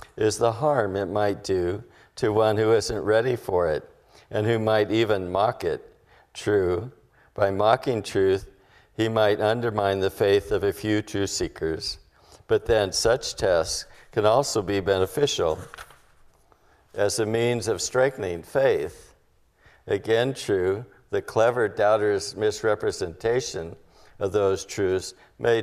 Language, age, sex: English, 50-69, male